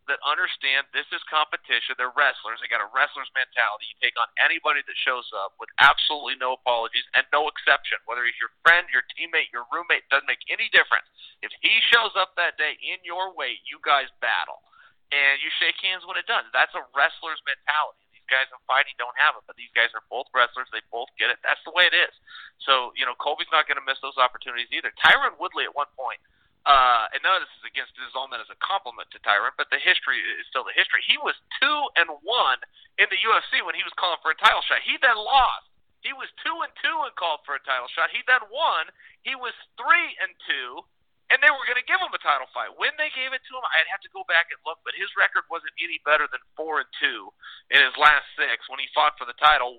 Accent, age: American, 40-59